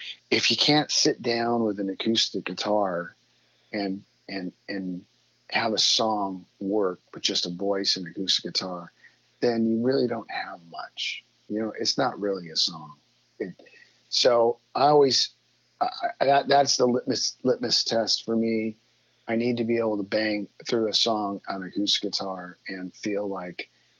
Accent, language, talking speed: American, English, 170 wpm